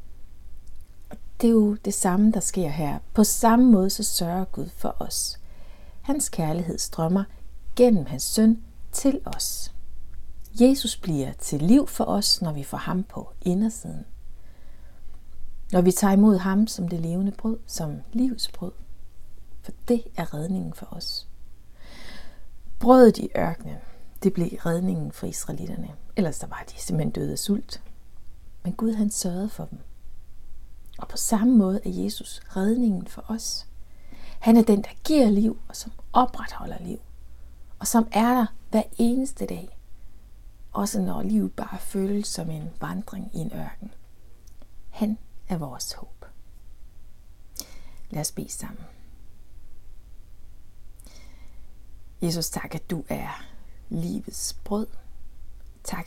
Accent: native